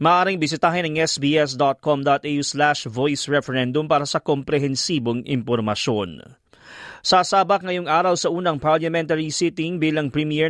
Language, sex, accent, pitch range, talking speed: Filipino, male, native, 145-170 Hz, 115 wpm